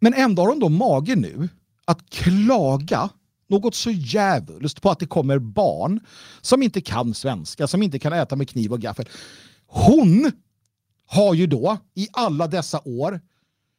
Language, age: Swedish, 50-69